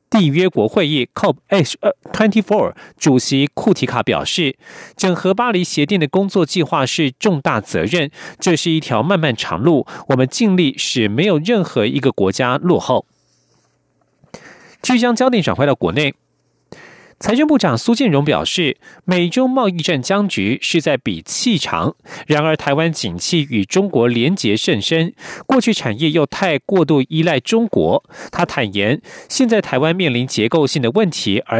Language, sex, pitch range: German, male, 135-190 Hz